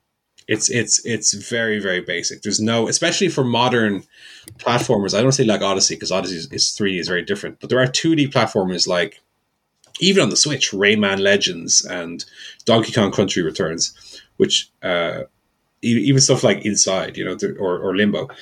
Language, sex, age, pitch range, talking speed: English, male, 30-49, 95-130 Hz, 175 wpm